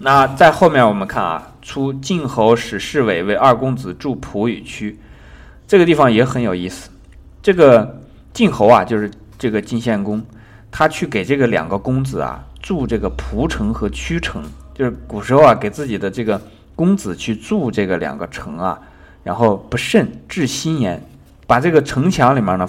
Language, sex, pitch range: Chinese, male, 90-135 Hz